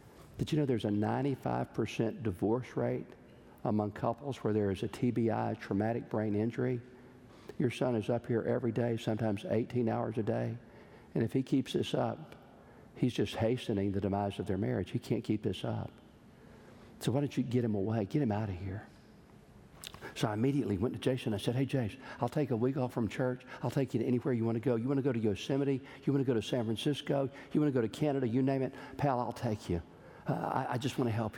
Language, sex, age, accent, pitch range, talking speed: German, male, 50-69, American, 115-145 Hz, 230 wpm